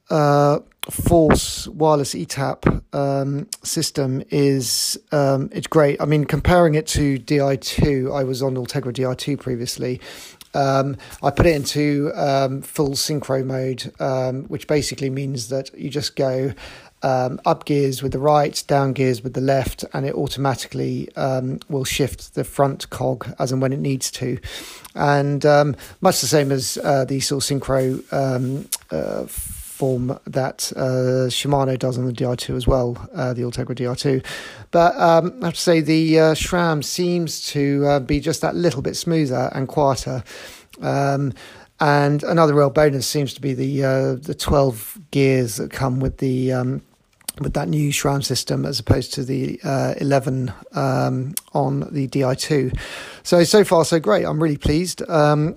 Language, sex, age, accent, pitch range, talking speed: English, male, 40-59, British, 130-150 Hz, 170 wpm